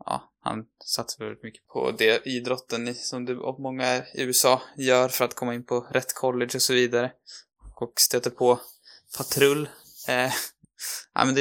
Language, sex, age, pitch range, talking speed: Swedish, male, 20-39, 110-130 Hz, 175 wpm